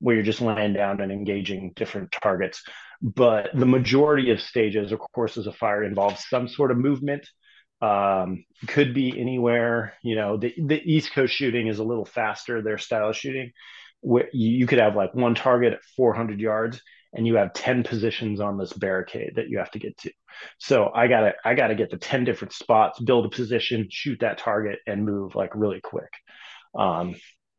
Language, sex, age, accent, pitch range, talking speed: English, male, 30-49, American, 105-125 Hz, 195 wpm